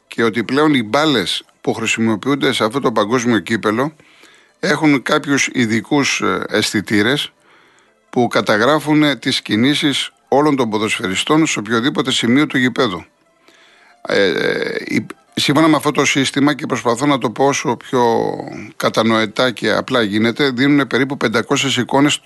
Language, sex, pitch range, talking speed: Greek, male, 115-150 Hz, 135 wpm